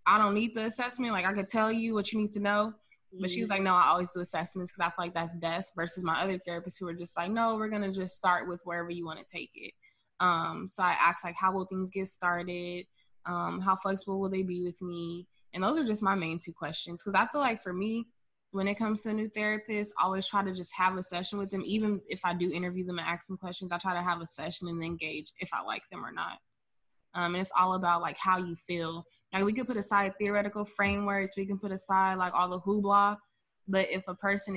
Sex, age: female, 20-39